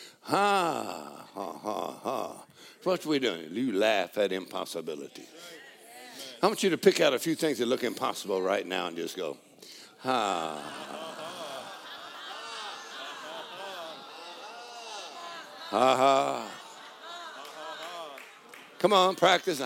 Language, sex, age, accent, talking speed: English, male, 60-79, American, 110 wpm